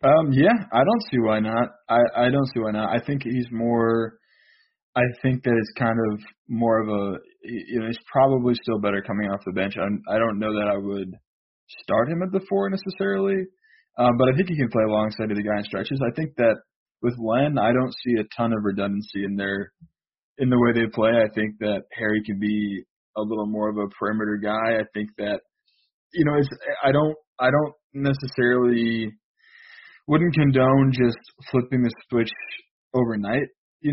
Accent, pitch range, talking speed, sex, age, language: American, 105-130 Hz, 200 wpm, male, 20-39, English